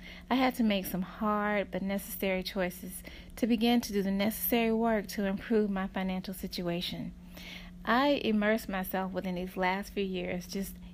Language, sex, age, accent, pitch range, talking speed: English, female, 30-49, American, 185-215 Hz, 165 wpm